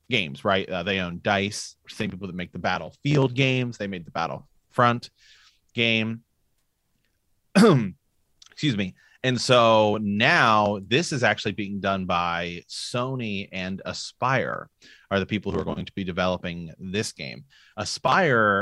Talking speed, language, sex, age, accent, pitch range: 140 wpm, English, male, 30-49, American, 95-115 Hz